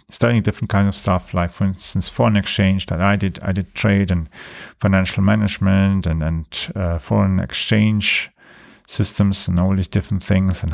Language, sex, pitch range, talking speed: English, male, 90-105 Hz, 175 wpm